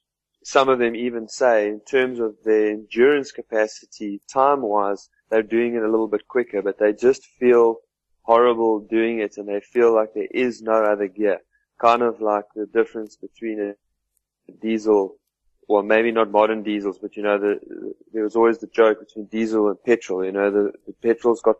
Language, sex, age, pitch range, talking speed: English, male, 20-39, 105-115 Hz, 190 wpm